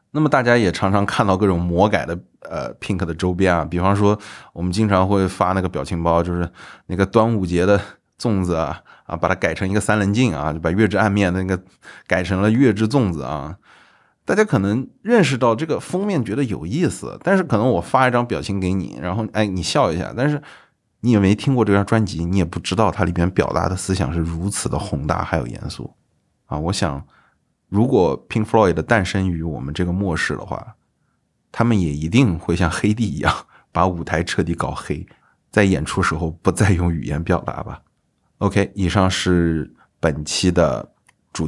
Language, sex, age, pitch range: Chinese, male, 20-39, 85-105 Hz